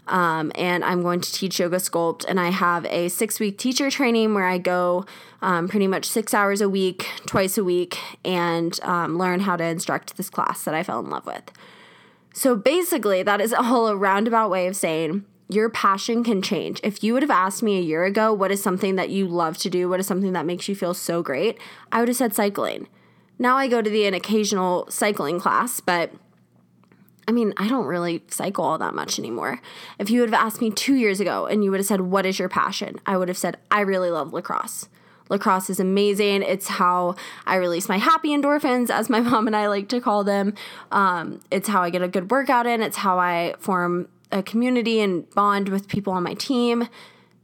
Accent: American